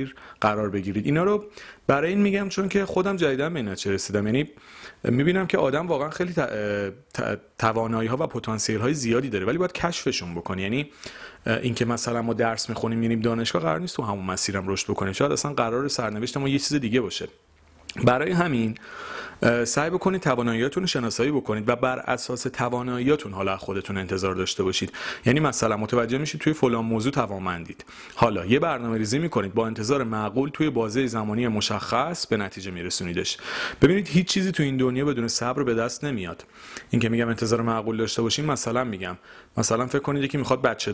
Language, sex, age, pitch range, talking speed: Persian, male, 30-49, 105-135 Hz, 175 wpm